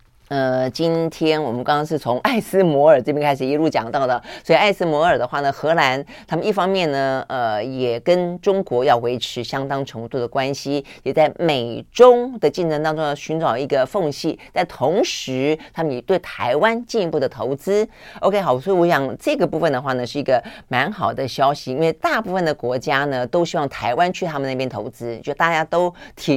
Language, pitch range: Chinese, 130-175 Hz